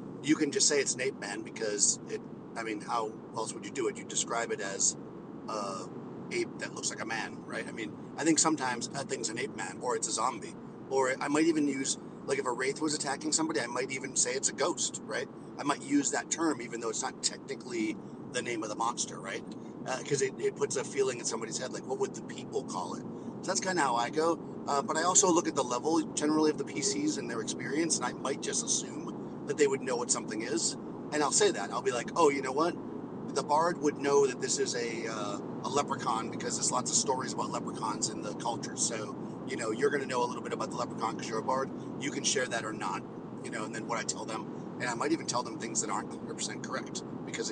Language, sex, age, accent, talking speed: English, male, 40-59, American, 260 wpm